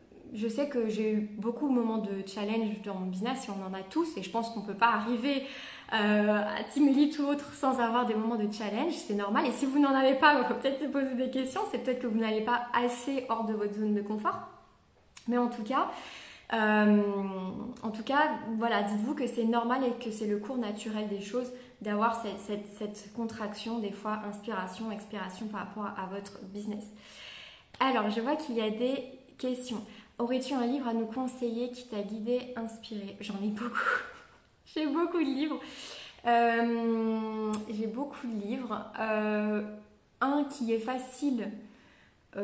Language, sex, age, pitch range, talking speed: English, female, 20-39, 210-250 Hz, 190 wpm